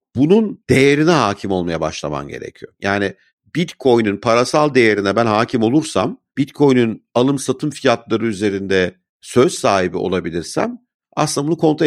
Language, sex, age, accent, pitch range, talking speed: Turkish, male, 50-69, native, 110-170 Hz, 120 wpm